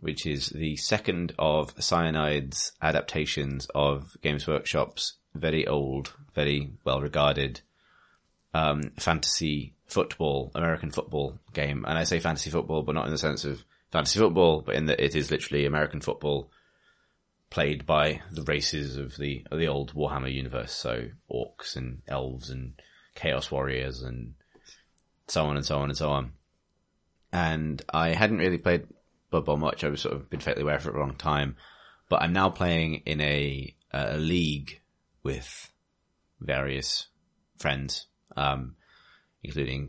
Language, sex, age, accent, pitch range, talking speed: English, male, 30-49, British, 70-80 Hz, 150 wpm